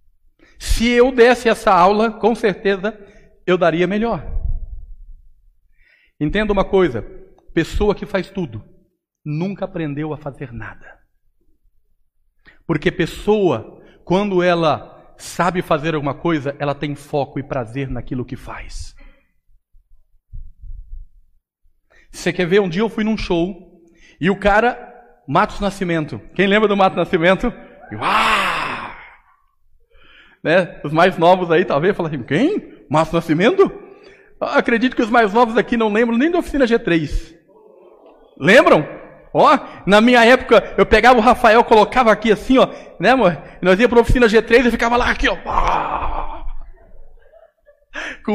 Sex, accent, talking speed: male, Brazilian, 135 wpm